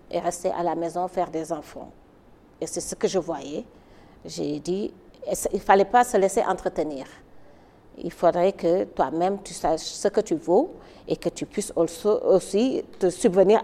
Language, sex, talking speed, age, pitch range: French, female, 175 wpm, 50-69, 175-285 Hz